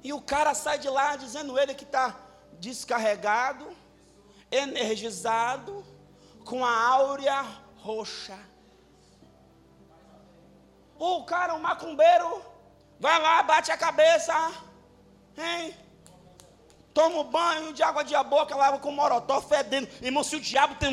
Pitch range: 235-300 Hz